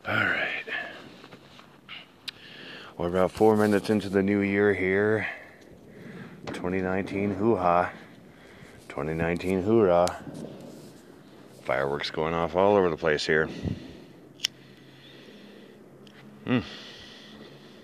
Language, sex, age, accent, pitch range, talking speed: English, male, 30-49, American, 80-100 Hz, 75 wpm